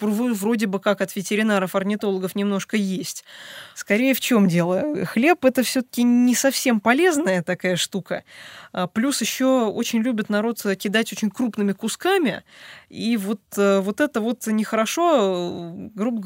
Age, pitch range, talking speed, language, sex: 20-39, 190-235 Hz, 135 wpm, Russian, female